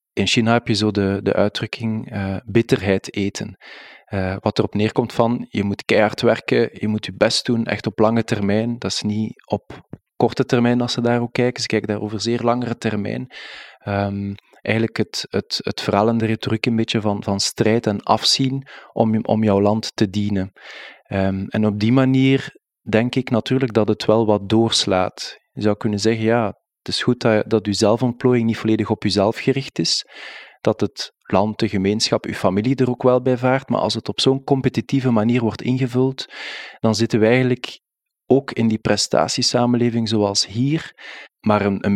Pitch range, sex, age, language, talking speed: 105-120 Hz, male, 20-39, Dutch, 190 wpm